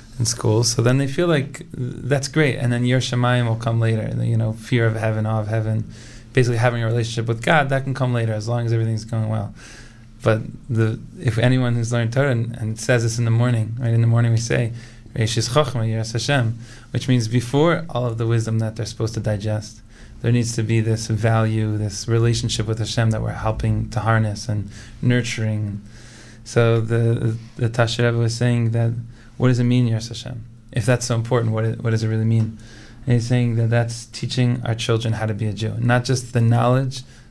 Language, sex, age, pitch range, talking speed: English, male, 20-39, 115-125 Hz, 210 wpm